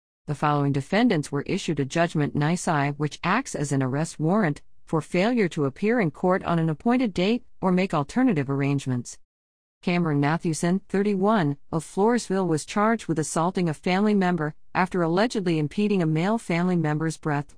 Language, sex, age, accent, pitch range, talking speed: English, female, 50-69, American, 145-185 Hz, 165 wpm